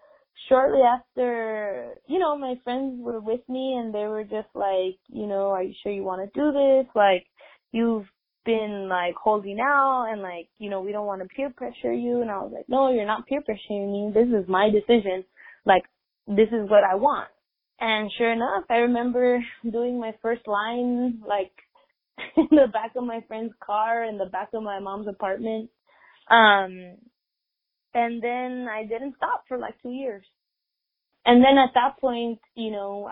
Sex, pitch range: female, 200-245 Hz